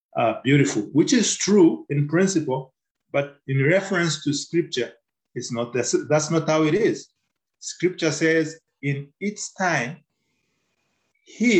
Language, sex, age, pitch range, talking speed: English, male, 40-59, 130-165 Hz, 130 wpm